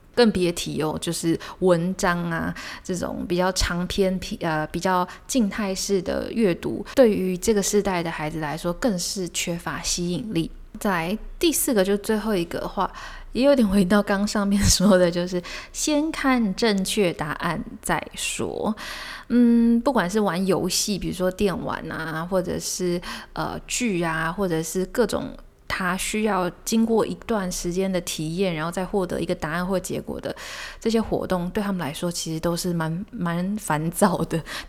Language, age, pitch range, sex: Chinese, 20-39, 175-210 Hz, female